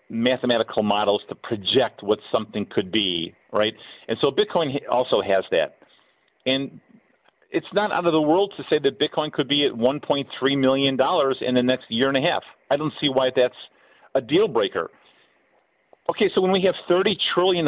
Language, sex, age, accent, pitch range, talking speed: English, male, 40-59, American, 120-160 Hz, 185 wpm